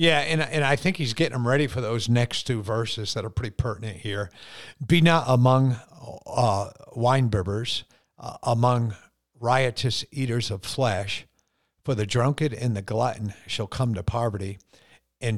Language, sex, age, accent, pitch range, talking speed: English, male, 50-69, American, 105-125 Hz, 160 wpm